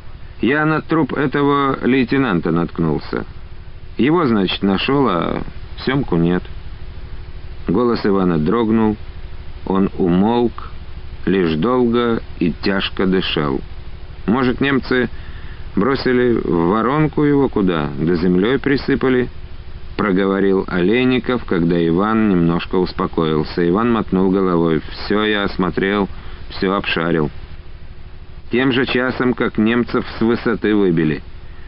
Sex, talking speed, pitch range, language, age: male, 100 wpm, 80-110 Hz, Russian, 50-69